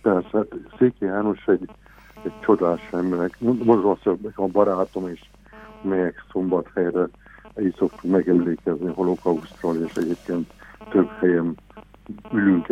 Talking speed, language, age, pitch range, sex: 115 wpm, Hungarian, 60-79, 85-100 Hz, male